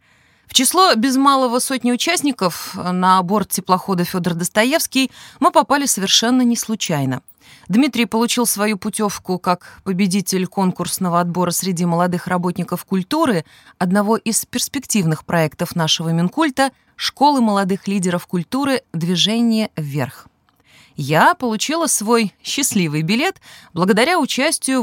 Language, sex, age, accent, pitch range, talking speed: Russian, female, 20-39, native, 165-235 Hz, 110 wpm